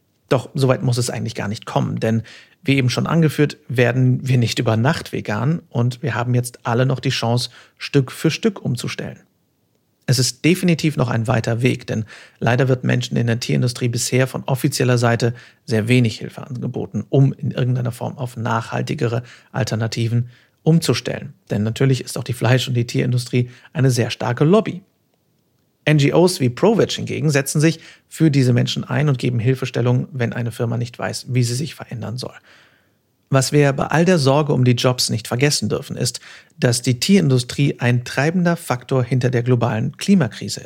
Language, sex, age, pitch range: German, male, 50-69, 120-145 Hz